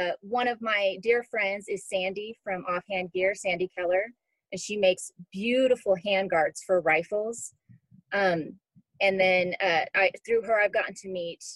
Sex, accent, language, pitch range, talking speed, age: female, American, English, 180-230 Hz, 160 wpm, 30-49